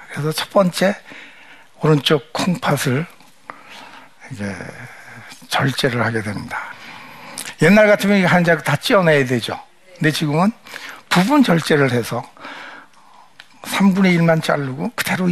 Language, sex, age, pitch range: Korean, male, 60-79, 130-185 Hz